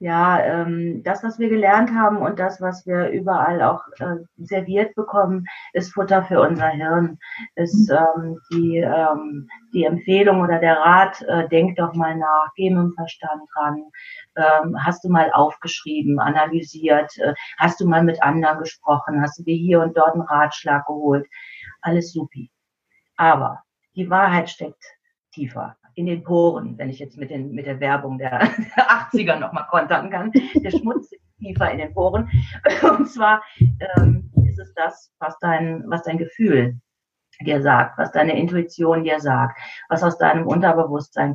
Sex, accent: female, German